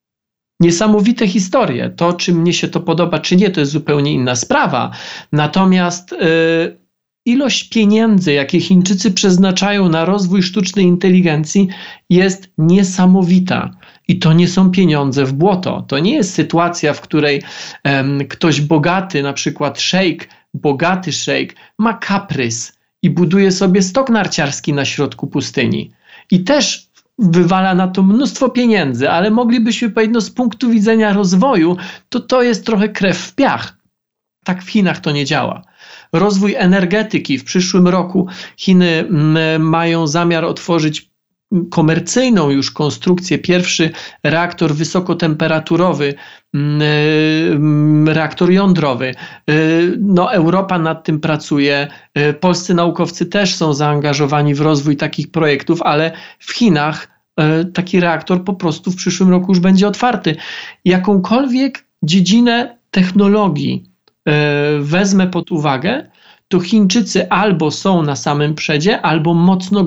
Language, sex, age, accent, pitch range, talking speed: Polish, male, 40-59, native, 155-195 Hz, 125 wpm